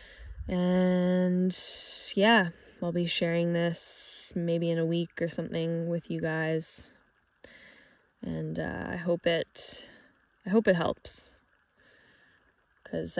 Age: 10-29